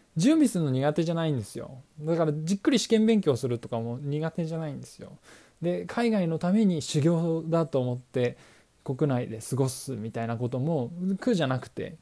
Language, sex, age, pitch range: Japanese, male, 20-39, 130-195 Hz